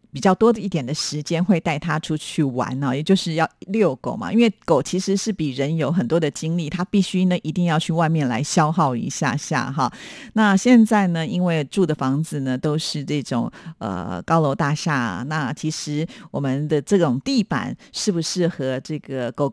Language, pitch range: Chinese, 150-195 Hz